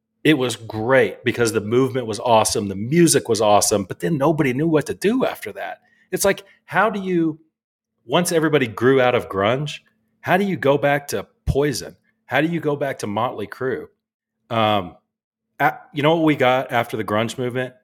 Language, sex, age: English, male, 40-59